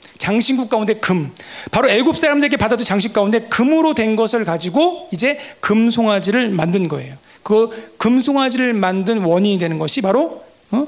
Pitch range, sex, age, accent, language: 185-255 Hz, male, 40-59, native, Korean